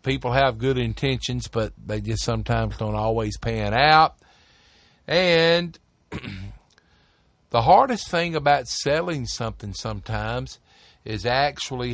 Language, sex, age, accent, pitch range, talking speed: English, male, 50-69, American, 110-155 Hz, 110 wpm